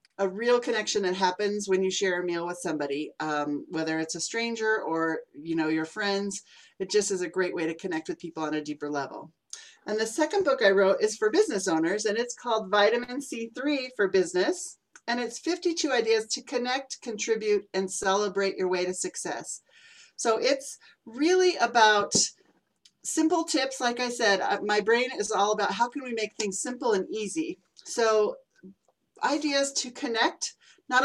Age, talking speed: 40-59, 180 wpm